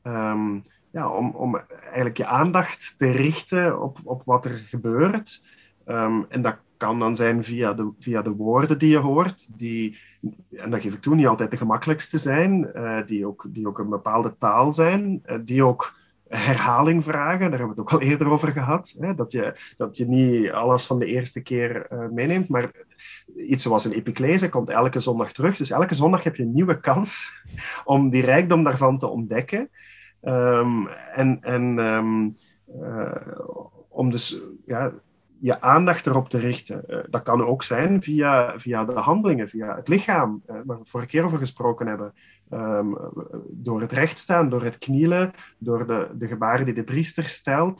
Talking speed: 185 wpm